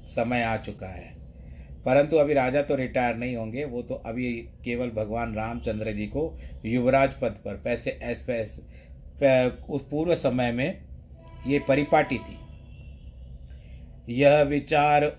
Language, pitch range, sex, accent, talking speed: Hindi, 105-135 Hz, male, native, 135 wpm